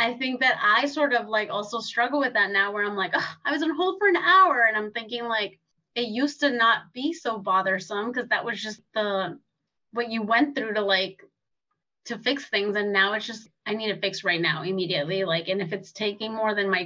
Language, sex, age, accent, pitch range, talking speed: English, female, 20-39, American, 195-230 Hz, 240 wpm